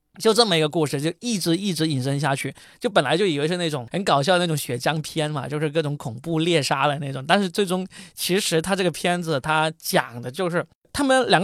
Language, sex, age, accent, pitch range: Chinese, male, 20-39, native, 150-195 Hz